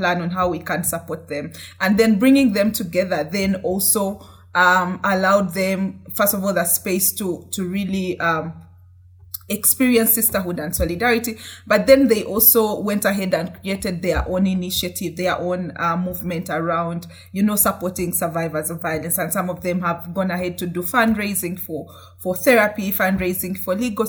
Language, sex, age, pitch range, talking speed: English, female, 20-39, 170-200 Hz, 170 wpm